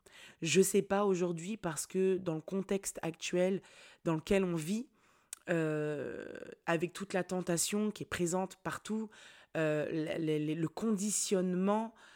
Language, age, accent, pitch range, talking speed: French, 20-39, French, 155-190 Hz, 145 wpm